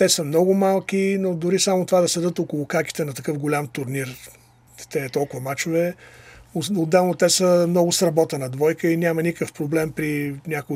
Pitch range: 145-175 Hz